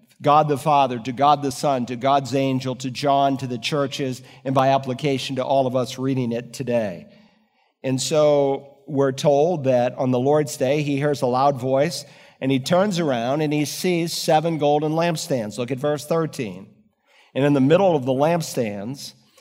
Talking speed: 185 wpm